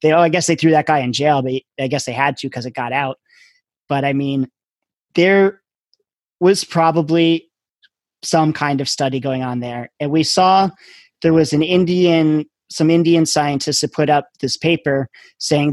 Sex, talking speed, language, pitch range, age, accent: male, 185 wpm, English, 135-165 Hz, 30-49, American